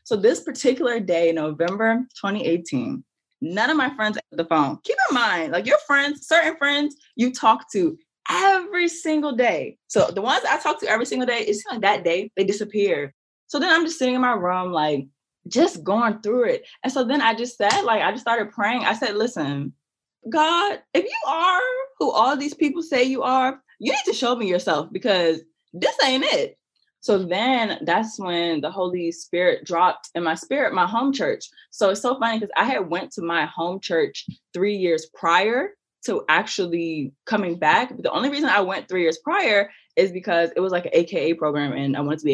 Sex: female